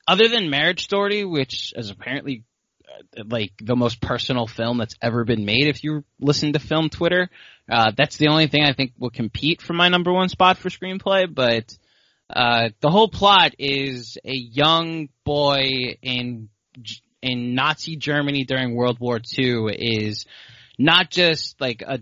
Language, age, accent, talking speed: English, 20-39, American, 165 wpm